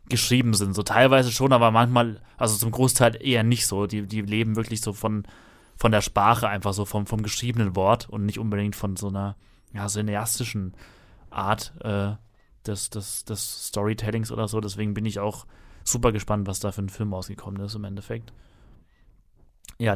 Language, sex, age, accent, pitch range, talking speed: German, male, 30-49, German, 105-130 Hz, 185 wpm